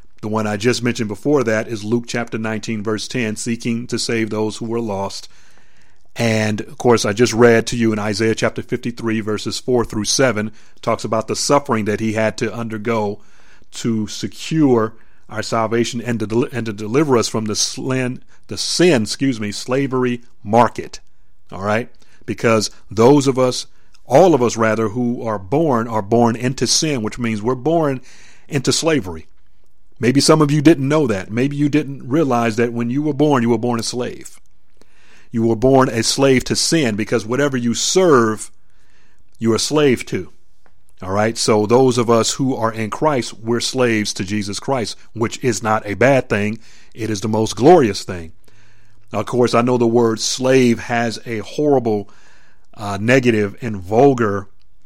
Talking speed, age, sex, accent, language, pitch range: 175 wpm, 40-59, male, American, English, 110-125 Hz